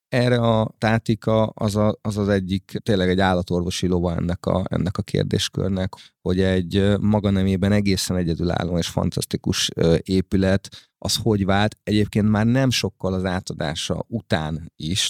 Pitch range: 90-105 Hz